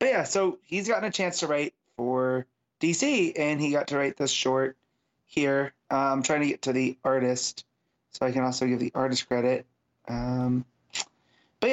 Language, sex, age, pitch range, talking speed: English, male, 30-49, 135-170 Hz, 185 wpm